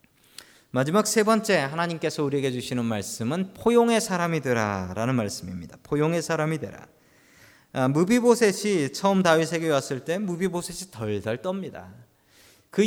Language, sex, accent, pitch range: Korean, male, native, 125-195 Hz